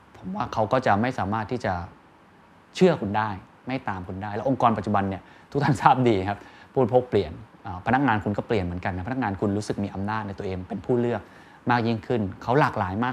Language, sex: Thai, male